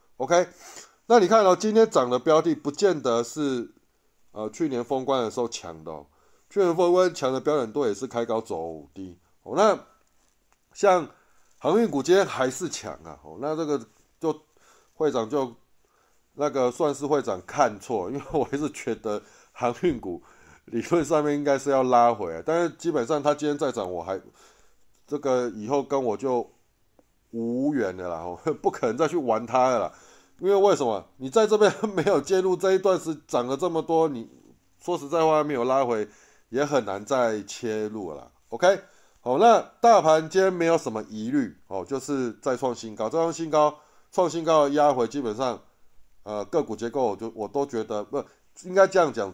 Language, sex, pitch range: Chinese, male, 110-165 Hz